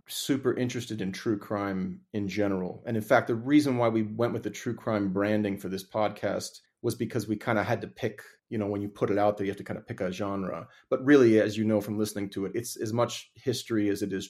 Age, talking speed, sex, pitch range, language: 30-49, 265 wpm, male, 100-115 Hz, English